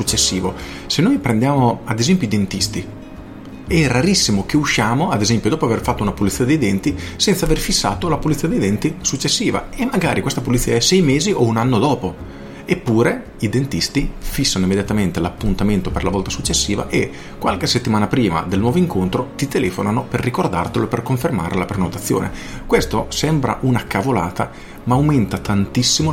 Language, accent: Italian, native